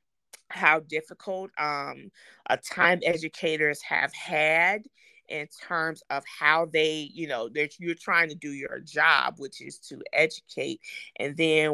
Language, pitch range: English, 145-175 Hz